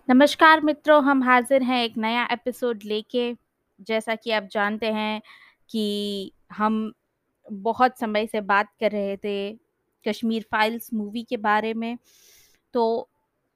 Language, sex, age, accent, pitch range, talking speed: Hindi, female, 20-39, native, 210-245 Hz, 135 wpm